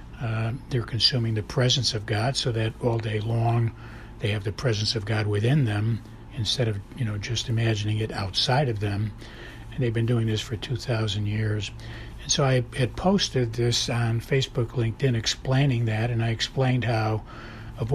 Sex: male